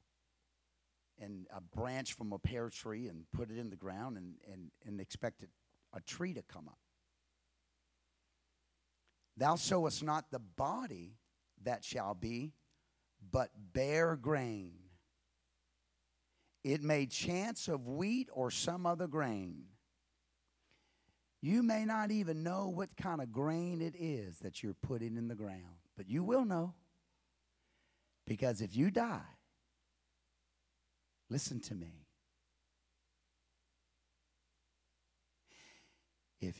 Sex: male